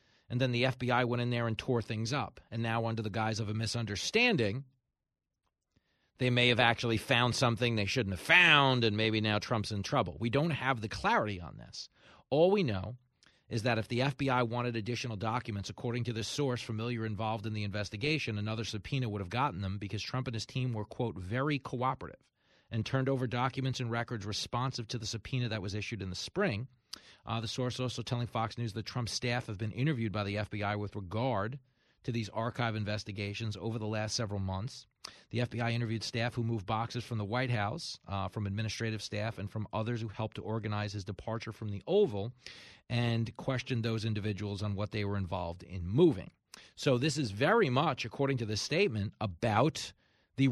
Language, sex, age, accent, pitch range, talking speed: English, male, 30-49, American, 105-125 Hz, 200 wpm